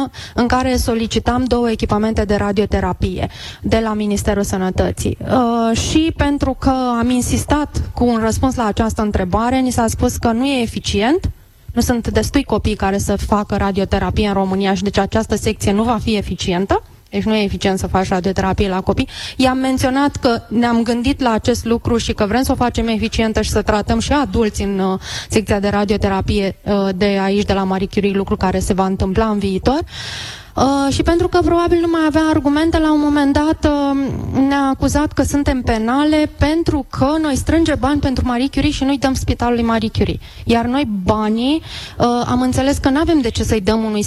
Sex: female